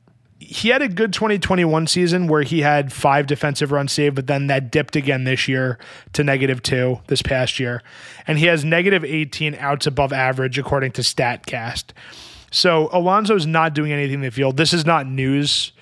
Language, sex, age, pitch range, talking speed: English, male, 20-39, 135-160 Hz, 190 wpm